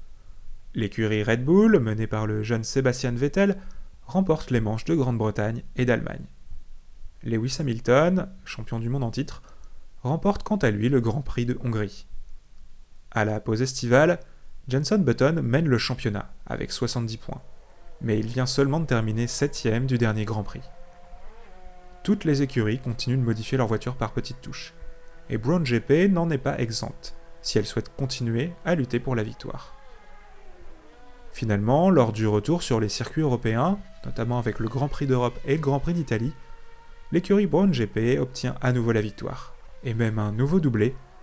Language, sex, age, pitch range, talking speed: French, male, 30-49, 110-150 Hz, 165 wpm